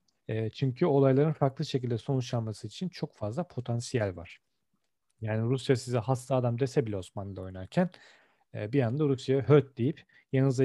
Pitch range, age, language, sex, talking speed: 115-140 Hz, 40-59, Turkish, male, 140 wpm